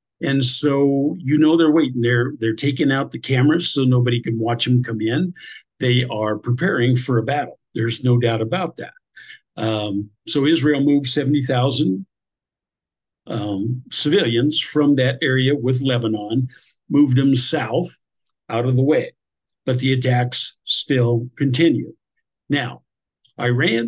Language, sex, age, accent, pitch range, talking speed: English, male, 50-69, American, 120-150 Hz, 140 wpm